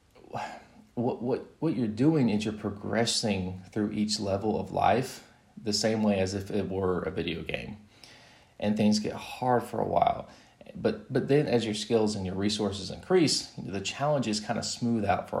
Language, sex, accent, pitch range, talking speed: English, male, American, 100-125 Hz, 185 wpm